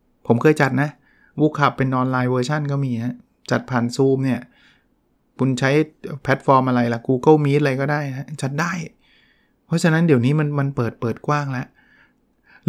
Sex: male